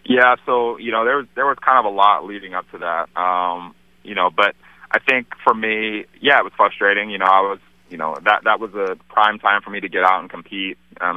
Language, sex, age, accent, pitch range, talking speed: English, male, 20-39, American, 90-105 Hz, 260 wpm